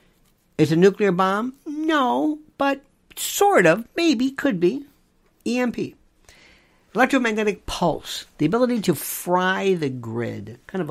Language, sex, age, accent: English, male, 50-69, American